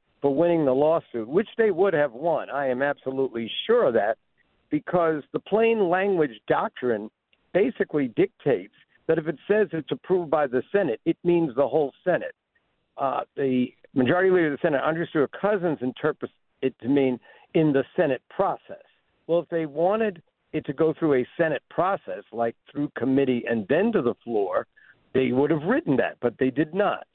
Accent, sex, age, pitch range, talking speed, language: American, male, 50-69, 130-170 Hz, 180 wpm, English